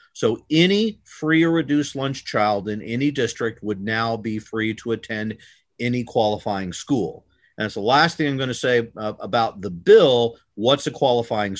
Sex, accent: male, American